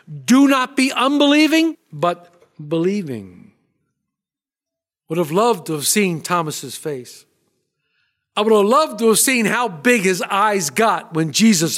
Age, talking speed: 50-69, 145 wpm